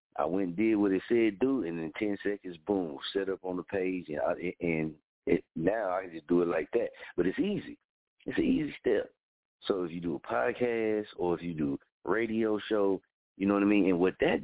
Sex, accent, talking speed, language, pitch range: male, American, 235 wpm, English, 90-115 Hz